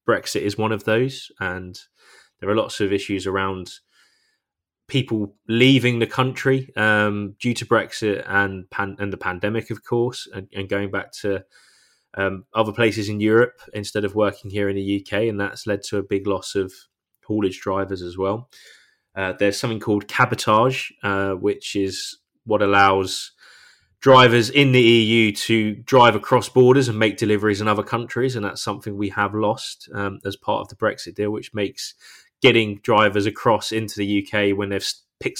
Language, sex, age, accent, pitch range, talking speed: English, male, 20-39, British, 100-115 Hz, 175 wpm